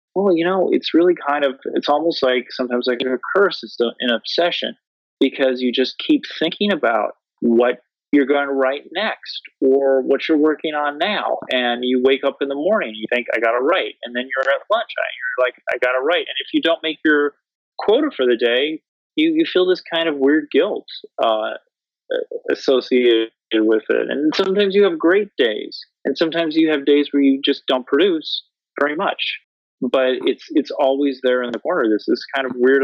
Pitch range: 125-180 Hz